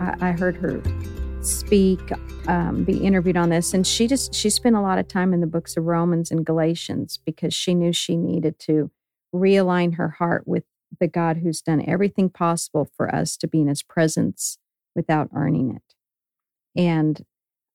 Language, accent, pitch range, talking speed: English, American, 160-185 Hz, 175 wpm